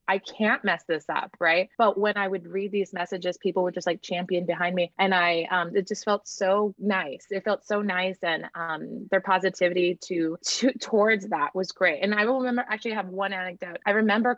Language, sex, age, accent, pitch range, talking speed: English, female, 20-39, American, 175-205 Hz, 215 wpm